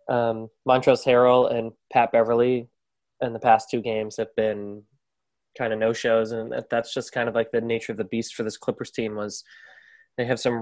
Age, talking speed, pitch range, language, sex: 20-39, 200 wpm, 110-130 Hz, English, male